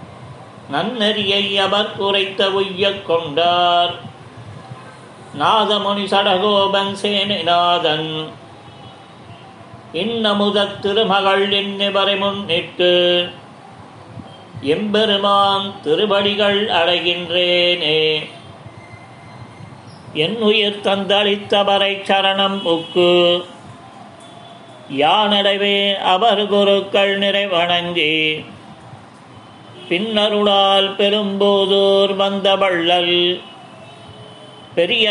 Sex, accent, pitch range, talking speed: male, native, 175-200 Hz, 50 wpm